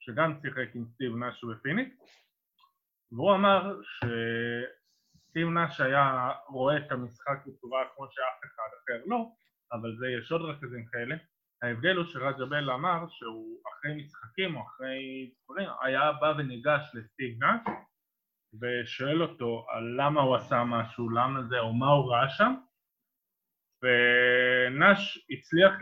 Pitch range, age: 120-155 Hz, 20-39